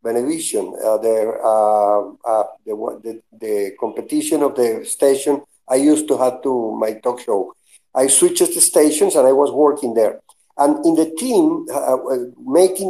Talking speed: 165 wpm